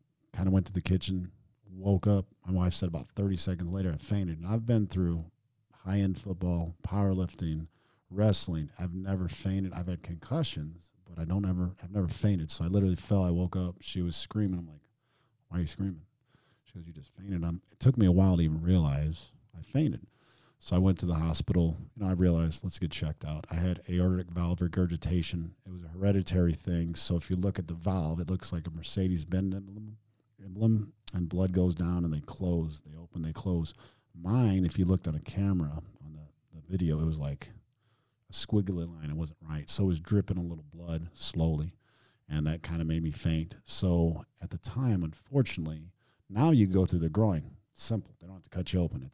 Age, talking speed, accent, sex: 40-59, 210 wpm, American, male